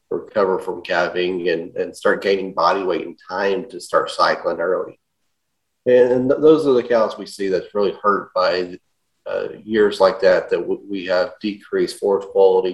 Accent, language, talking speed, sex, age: American, English, 170 wpm, male, 30-49